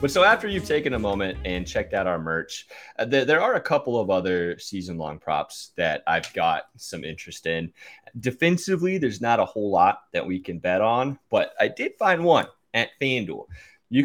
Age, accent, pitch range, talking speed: 30-49, American, 100-135 Hz, 200 wpm